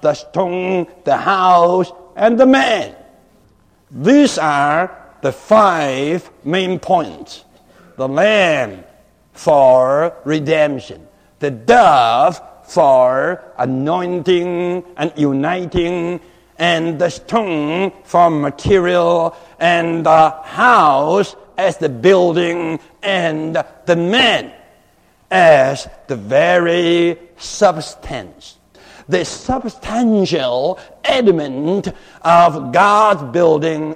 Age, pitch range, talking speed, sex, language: 60-79, 155-195 Hz, 85 wpm, male, English